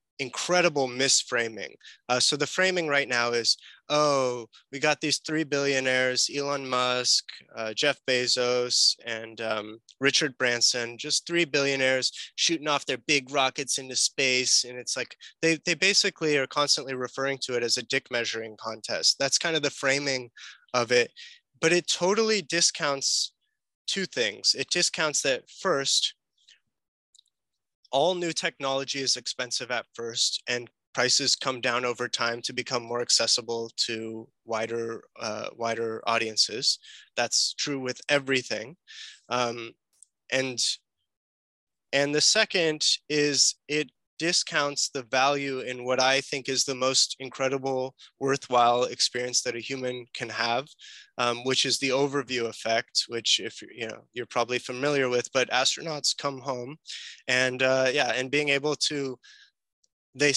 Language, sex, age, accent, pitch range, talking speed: English, male, 20-39, American, 125-150 Hz, 145 wpm